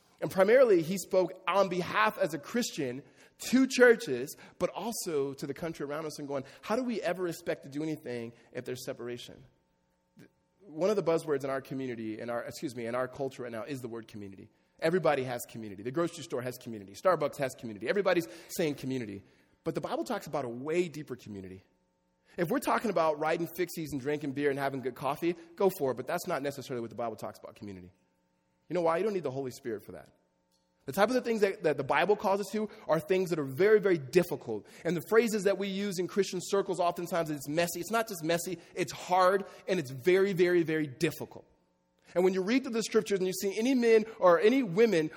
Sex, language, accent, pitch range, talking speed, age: male, English, American, 130-205 Hz, 225 wpm, 20-39